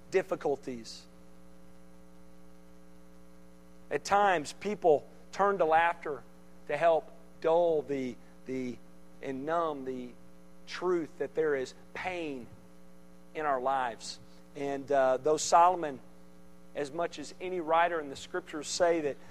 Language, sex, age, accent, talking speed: English, male, 40-59, American, 115 wpm